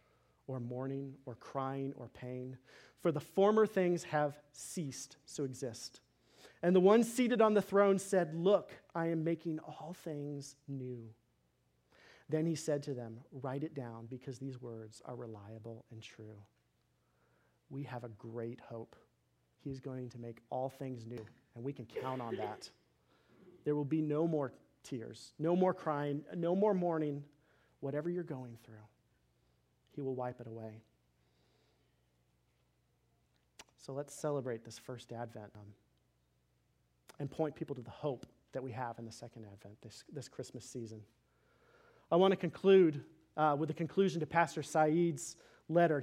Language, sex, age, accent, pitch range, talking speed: English, male, 40-59, American, 115-155 Hz, 155 wpm